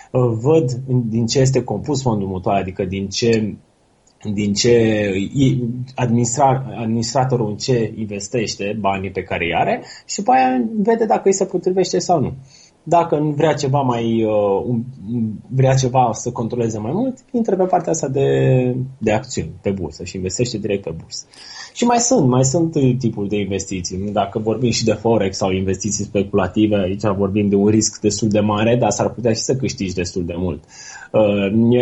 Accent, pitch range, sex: native, 100-125 Hz, male